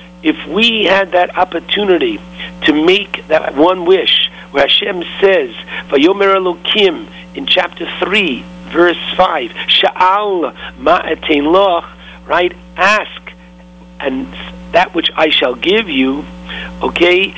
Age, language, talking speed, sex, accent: 60-79, English, 105 wpm, male, American